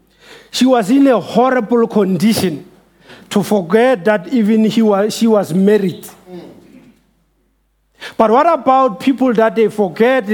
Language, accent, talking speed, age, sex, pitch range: English, South African, 115 wpm, 50-69, male, 200-245 Hz